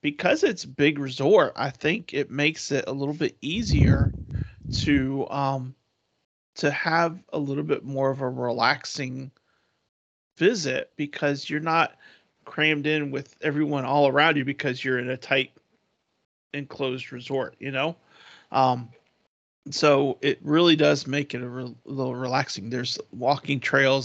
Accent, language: American, English